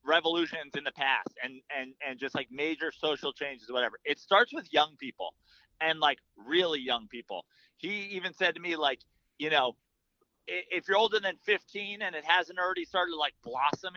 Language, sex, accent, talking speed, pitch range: English, male, American, 190 wpm, 145-195 Hz